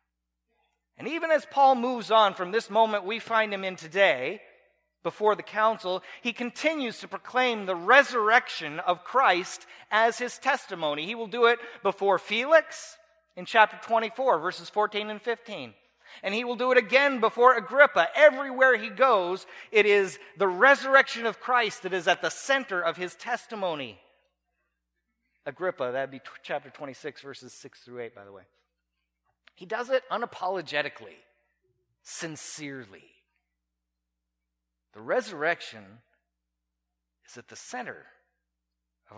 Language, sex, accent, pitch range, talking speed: English, male, American, 145-235 Hz, 140 wpm